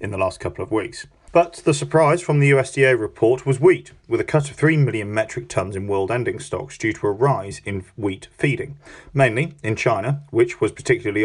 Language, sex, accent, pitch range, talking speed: English, male, British, 110-145 Hz, 215 wpm